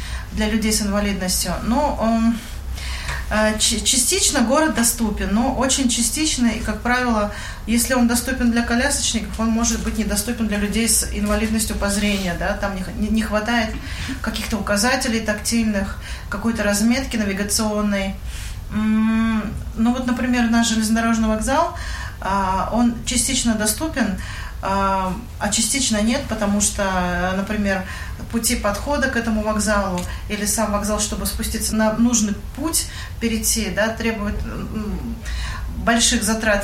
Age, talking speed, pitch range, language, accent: 30-49, 125 wpm, 190-230 Hz, Russian, native